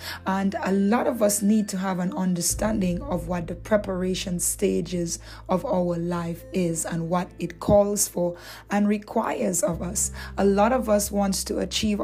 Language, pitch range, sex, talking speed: English, 180-210 Hz, female, 175 wpm